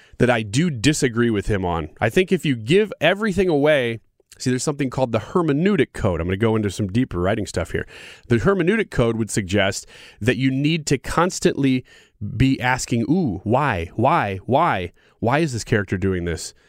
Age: 30-49